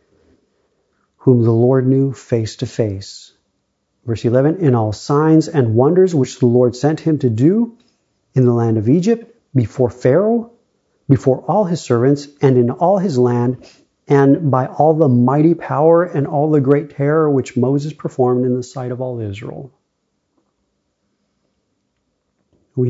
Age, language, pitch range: 40-59, English, 115-150 Hz